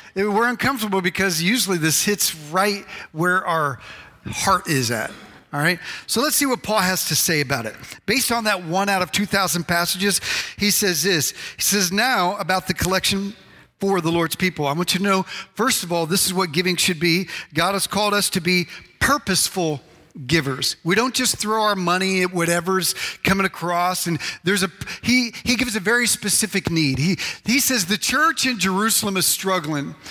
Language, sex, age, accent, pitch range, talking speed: English, male, 40-59, American, 180-230 Hz, 190 wpm